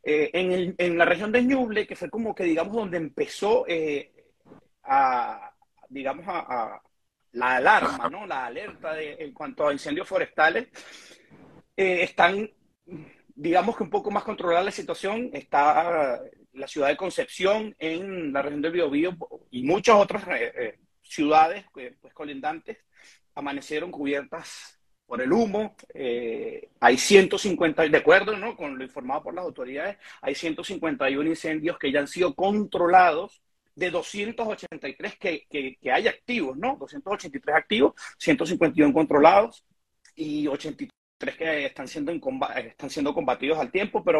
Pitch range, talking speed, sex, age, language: 160-250 Hz, 145 wpm, male, 40-59, Spanish